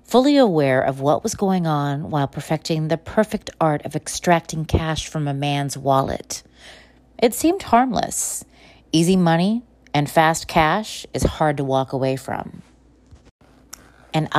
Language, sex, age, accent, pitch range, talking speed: English, female, 30-49, American, 140-185 Hz, 140 wpm